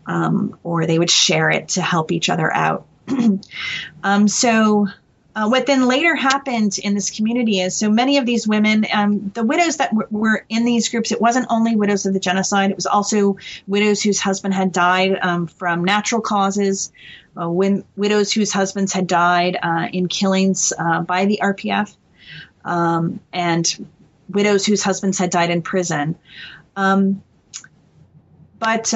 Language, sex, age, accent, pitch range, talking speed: English, female, 30-49, American, 185-220 Hz, 165 wpm